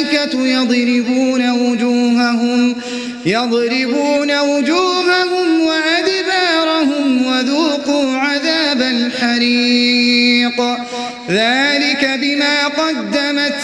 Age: 30-49